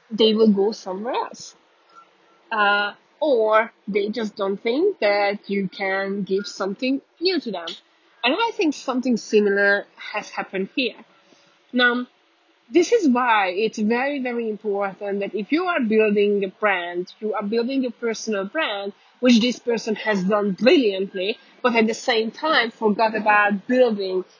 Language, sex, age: English, female, 20-39